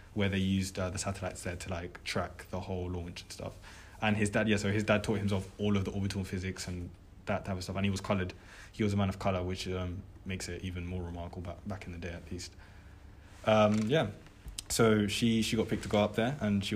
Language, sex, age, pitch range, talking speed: English, male, 20-39, 90-105 Hz, 255 wpm